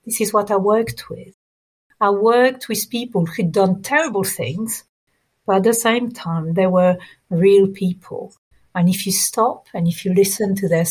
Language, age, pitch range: English, 50-69, 175-210 Hz